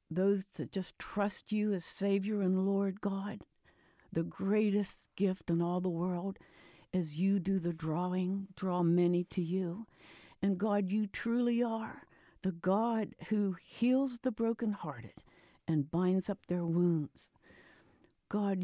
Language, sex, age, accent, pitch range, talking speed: English, female, 60-79, American, 175-215 Hz, 140 wpm